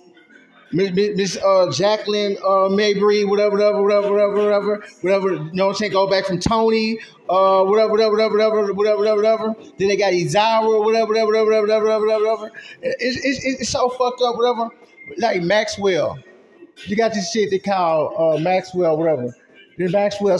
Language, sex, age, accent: English, male, 30-49, American